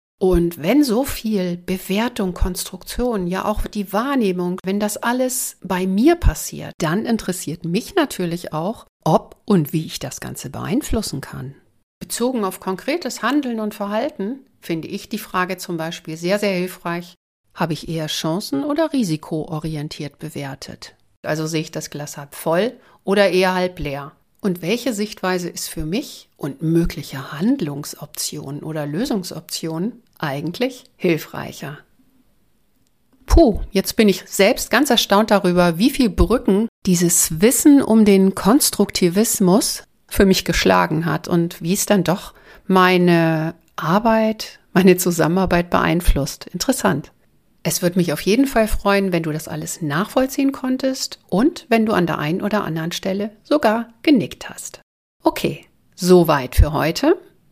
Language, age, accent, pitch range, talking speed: German, 60-79, German, 165-225 Hz, 140 wpm